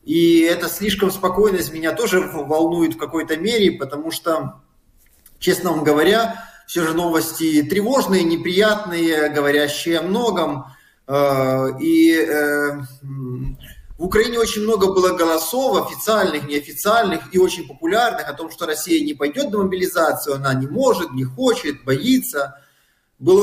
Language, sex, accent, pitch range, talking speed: Russian, male, native, 165-210 Hz, 130 wpm